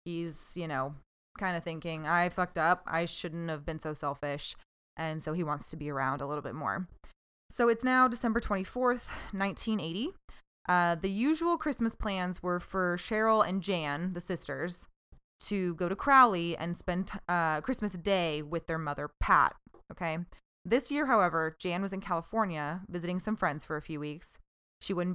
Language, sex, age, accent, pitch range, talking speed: English, female, 20-39, American, 165-205 Hz, 175 wpm